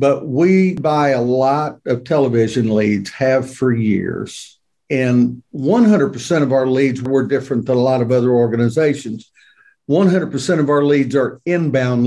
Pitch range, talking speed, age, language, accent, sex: 125-150 Hz, 150 wpm, 60-79, English, American, male